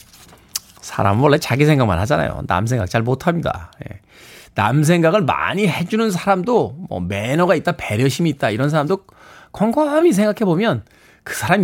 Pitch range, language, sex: 135-205 Hz, Korean, male